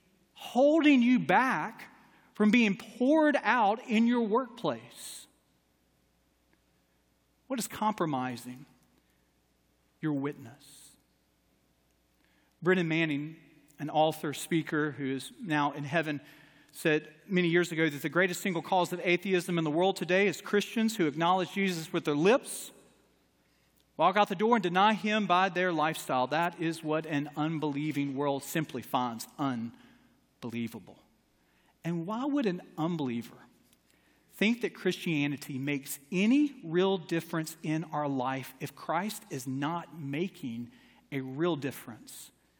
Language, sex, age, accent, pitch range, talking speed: English, male, 40-59, American, 140-200 Hz, 125 wpm